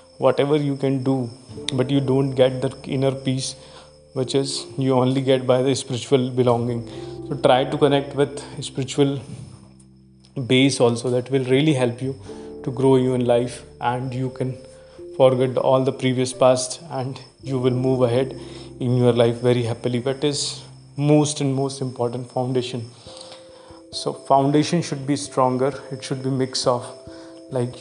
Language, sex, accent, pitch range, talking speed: Hindi, male, native, 125-140 Hz, 160 wpm